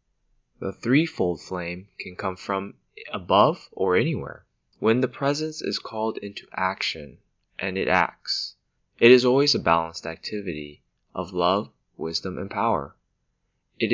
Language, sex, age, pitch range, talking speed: English, male, 20-39, 90-115 Hz, 135 wpm